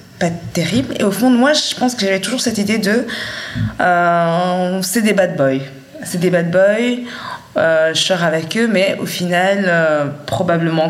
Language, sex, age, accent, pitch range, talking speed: French, female, 20-39, French, 160-195 Hz, 185 wpm